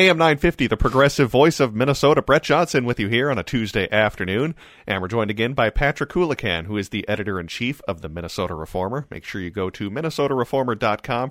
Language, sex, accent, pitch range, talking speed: English, male, American, 90-135 Hz, 195 wpm